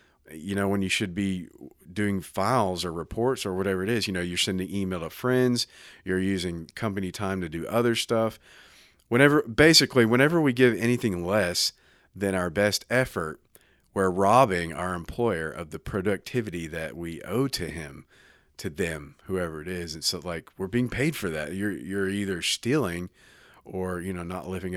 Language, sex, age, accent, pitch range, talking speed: English, male, 40-59, American, 90-115 Hz, 180 wpm